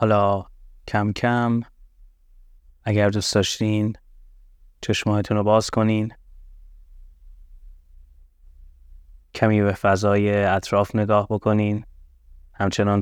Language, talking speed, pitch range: Persian, 75 wpm, 80-105 Hz